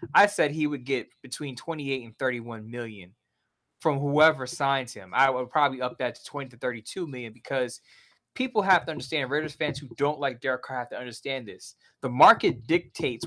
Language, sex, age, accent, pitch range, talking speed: English, male, 20-39, American, 130-160 Hz, 195 wpm